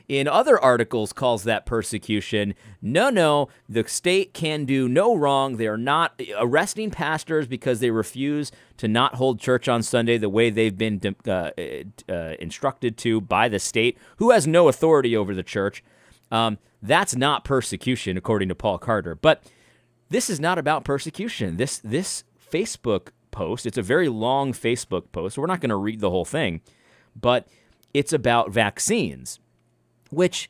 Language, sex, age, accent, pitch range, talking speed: English, male, 30-49, American, 110-140 Hz, 165 wpm